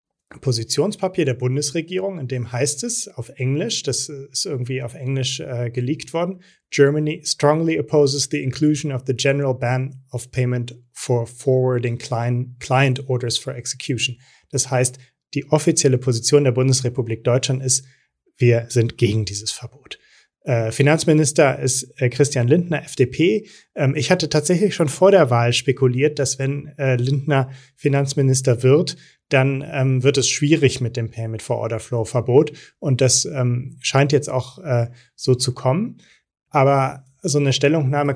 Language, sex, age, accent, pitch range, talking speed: German, male, 30-49, German, 125-145 Hz, 135 wpm